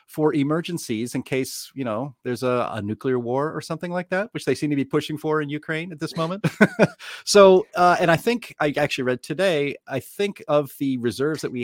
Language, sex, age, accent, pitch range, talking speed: English, male, 40-59, American, 130-165 Hz, 220 wpm